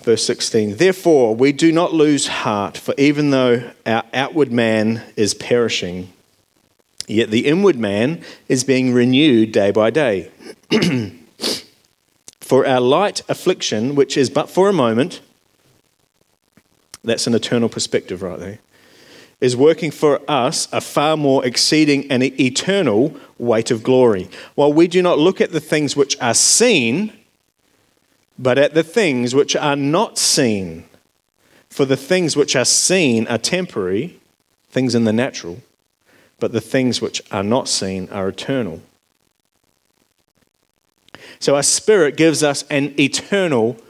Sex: male